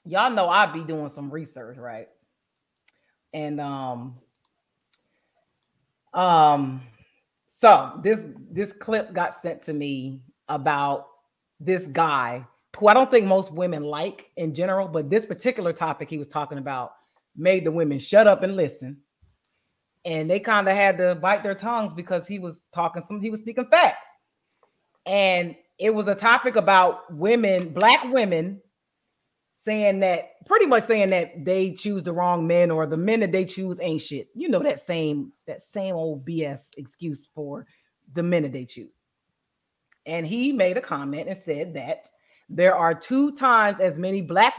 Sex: female